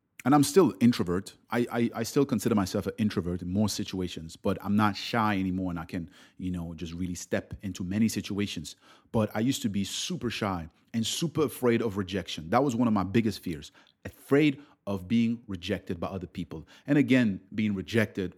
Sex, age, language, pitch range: male, 30-49, English, 95-115 Hz